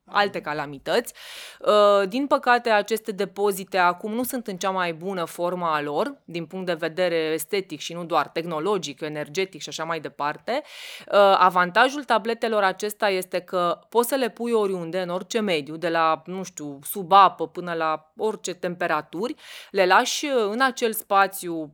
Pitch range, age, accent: 170-225 Hz, 20-39, native